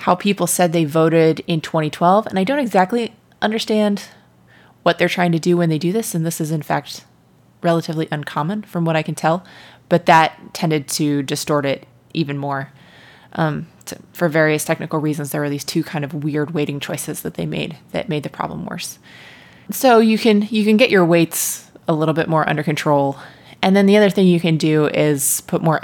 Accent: American